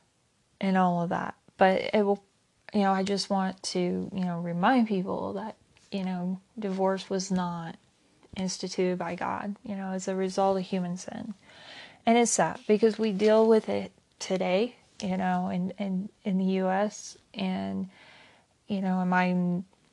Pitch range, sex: 185-205 Hz, female